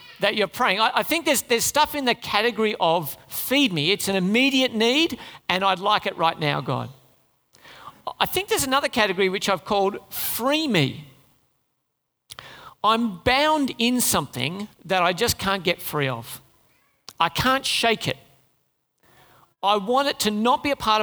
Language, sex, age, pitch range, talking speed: English, male, 50-69, 150-225 Hz, 170 wpm